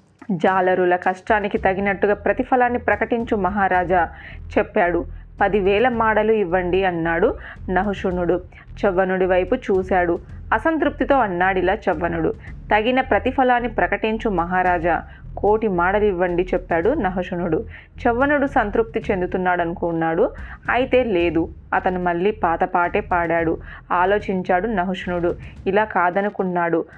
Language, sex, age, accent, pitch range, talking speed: Telugu, female, 30-49, native, 175-220 Hz, 90 wpm